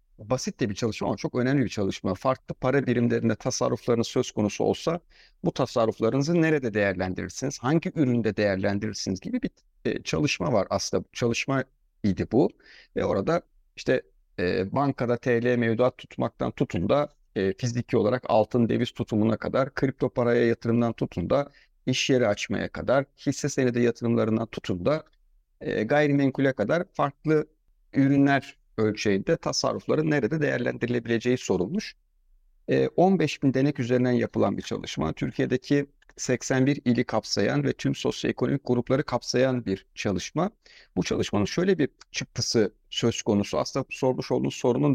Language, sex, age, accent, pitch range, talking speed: Turkish, male, 50-69, native, 110-140 Hz, 135 wpm